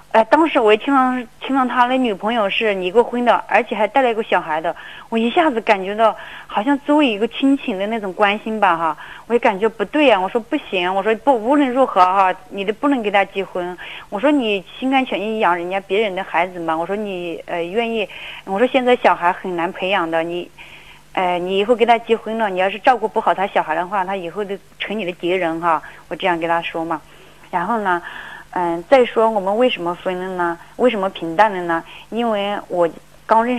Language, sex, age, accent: Chinese, female, 30-49, native